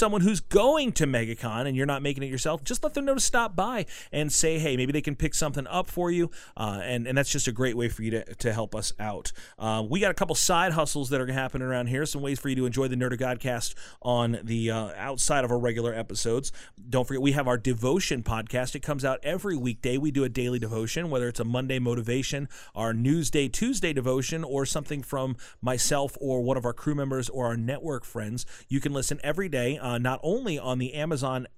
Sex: male